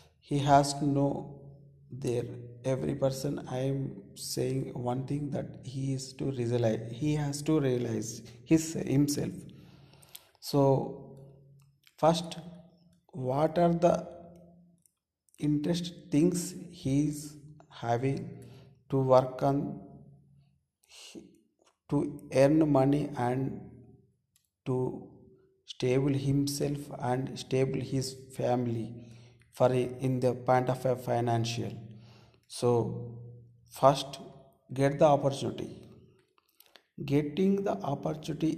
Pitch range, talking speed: 120-150 Hz, 95 wpm